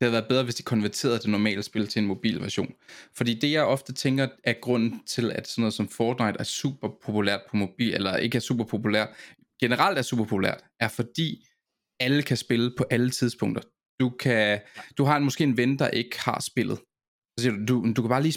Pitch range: 110-135 Hz